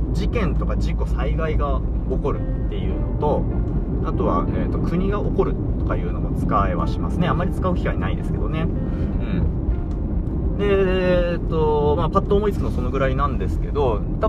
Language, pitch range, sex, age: Japanese, 75-85 Hz, male, 20-39